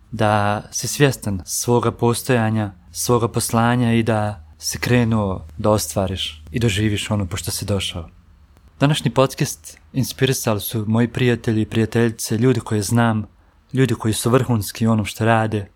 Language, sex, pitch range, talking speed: Croatian, male, 105-125 Hz, 140 wpm